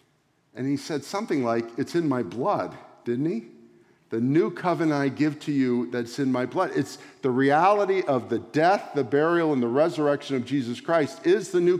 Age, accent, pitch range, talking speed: 50-69, American, 130-175 Hz, 200 wpm